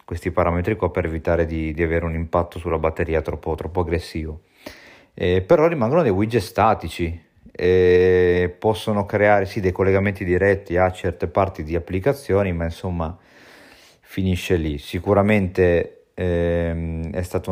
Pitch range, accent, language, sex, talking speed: 85-95 Hz, native, Italian, male, 140 wpm